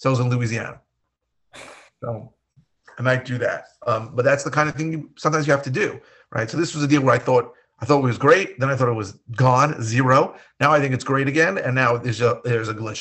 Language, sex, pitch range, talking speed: English, male, 120-145 Hz, 260 wpm